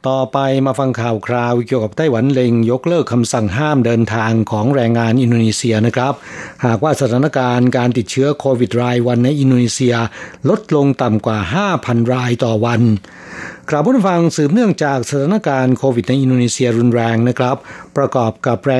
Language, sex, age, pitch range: Thai, male, 60-79, 120-140 Hz